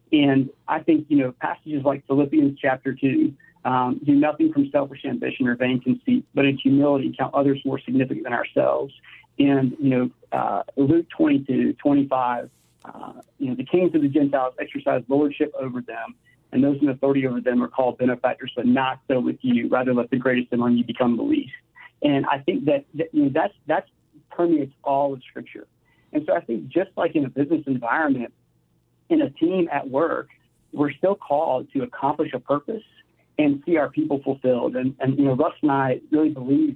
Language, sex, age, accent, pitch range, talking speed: English, male, 40-59, American, 130-155 Hz, 195 wpm